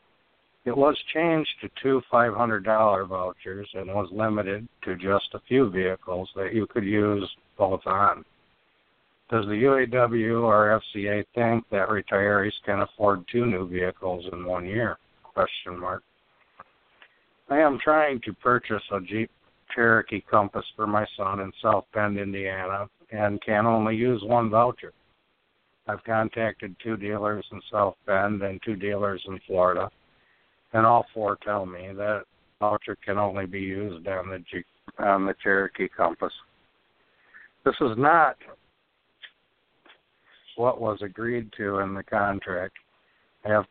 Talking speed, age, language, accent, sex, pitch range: 140 wpm, 60-79, English, American, male, 100-110 Hz